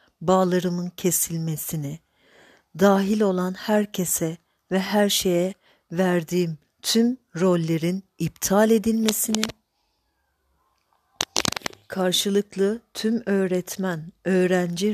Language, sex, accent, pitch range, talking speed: Turkish, female, native, 170-205 Hz, 70 wpm